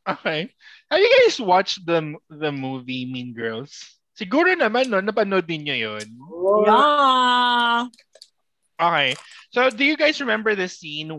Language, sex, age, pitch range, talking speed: Filipino, male, 20-39, 130-200 Hz, 125 wpm